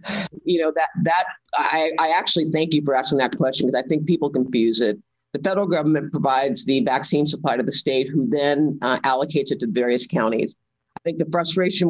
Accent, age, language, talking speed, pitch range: American, 50-69, English, 205 wpm, 130-160 Hz